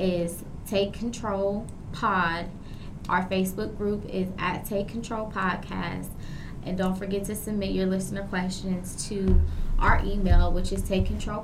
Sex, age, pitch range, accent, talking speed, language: female, 20-39, 185-210 Hz, American, 140 wpm, English